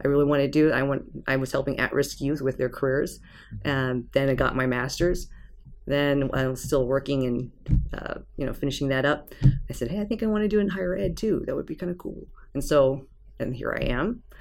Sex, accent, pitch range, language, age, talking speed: female, American, 135-170 Hz, English, 30-49, 235 wpm